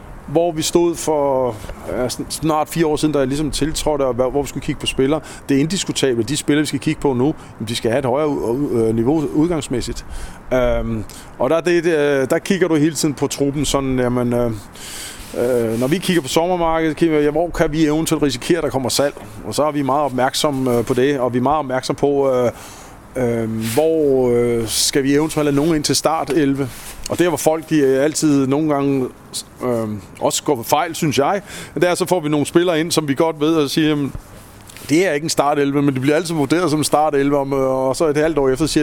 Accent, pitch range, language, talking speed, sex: native, 125-155 Hz, Danish, 230 wpm, male